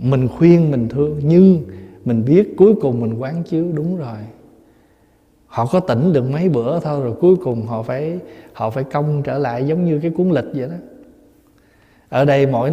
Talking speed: 195 wpm